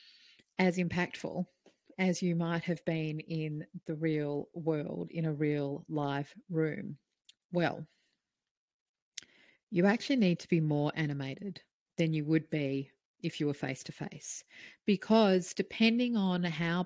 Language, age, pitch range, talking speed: English, 40-59, 145-180 Hz, 130 wpm